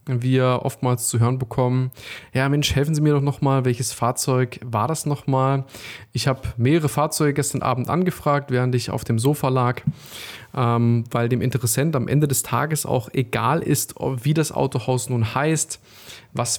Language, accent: German, German